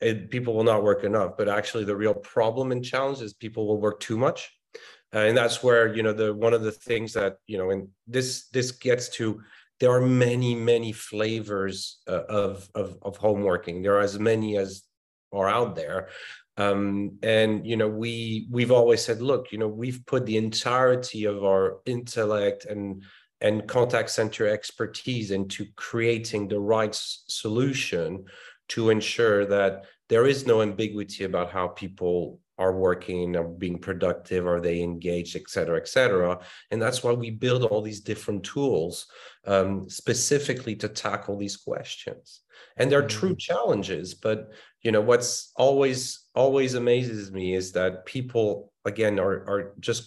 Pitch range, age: 100-120 Hz, 30-49